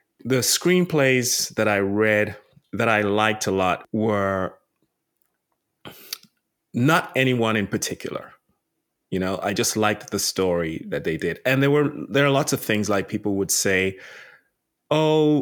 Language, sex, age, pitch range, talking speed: English, male, 30-49, 95-120 Hz, 150 wpm